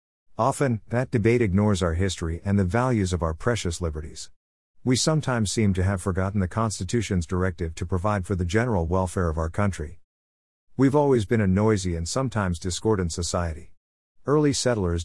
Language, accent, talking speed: English, American, 170 wpm